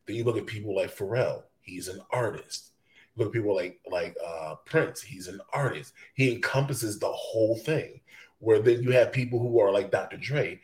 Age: 30-49